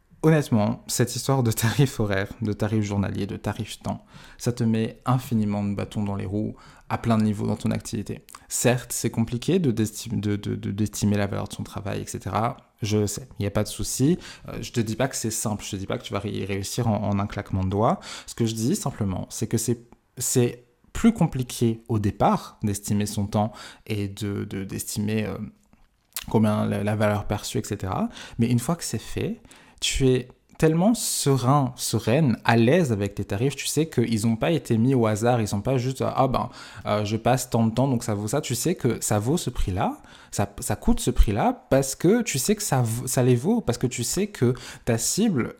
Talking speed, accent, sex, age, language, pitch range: 230 wpm, French, male, 20-39, French, 105-130 Hz